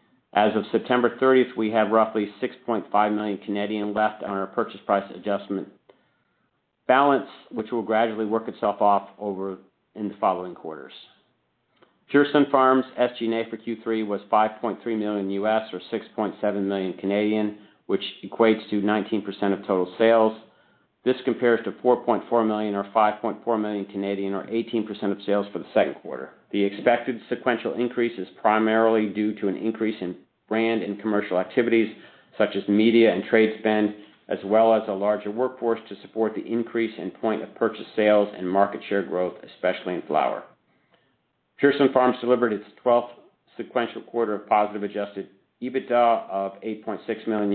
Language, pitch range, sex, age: English, 100-115 Hz, male, 50-69